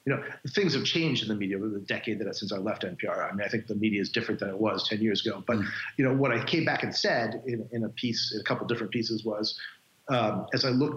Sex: male